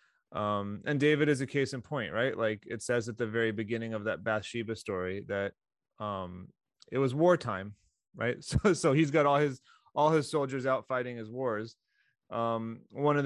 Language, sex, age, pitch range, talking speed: English, male, 20-39, 105-125 Hz, 190 wpm